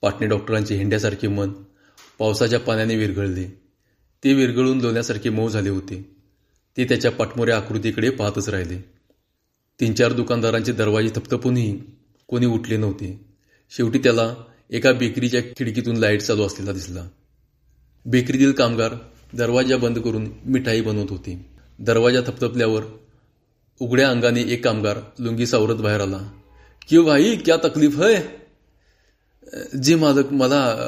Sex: male